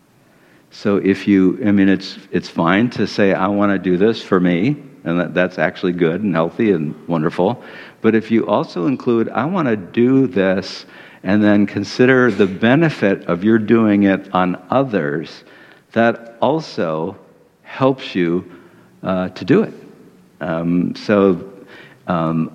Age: 60-79